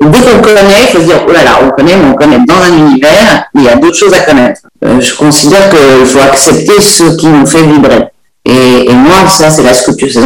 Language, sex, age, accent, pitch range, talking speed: French, female, 50-69, French, 135-180 Hz, 255 wpm